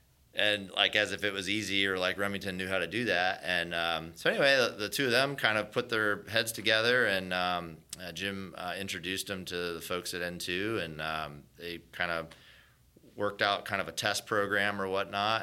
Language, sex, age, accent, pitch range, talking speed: English, male, 30-49, American, 85-95 Hz, 220 wpm